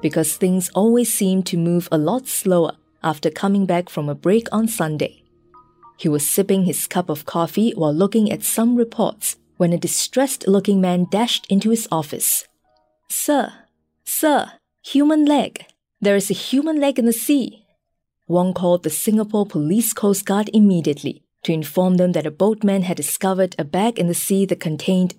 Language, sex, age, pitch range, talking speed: English, female, 20-39, 170-225 Hz, 170 wpm